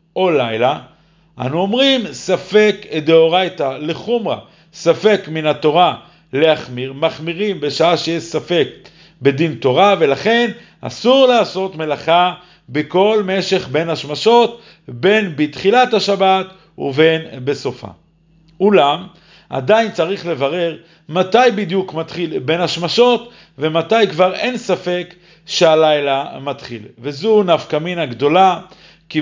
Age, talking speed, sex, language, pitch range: 50-69, 105 wpm, male, Hebrew, 155-190 Hz